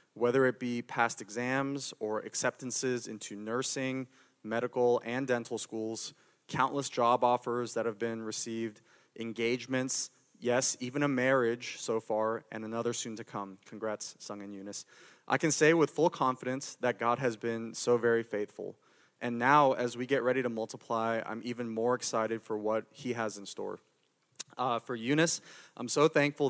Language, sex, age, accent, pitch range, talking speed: English, male, 20-39, American, 115-130 Hz, 165 wpm